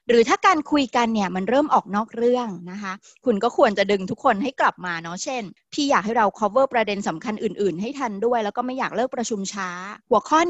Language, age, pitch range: Thai, 30-49, 195-250 Hz